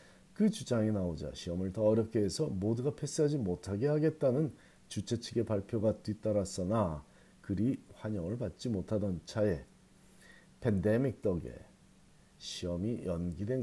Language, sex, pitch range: Korean, male, 95-130 Hz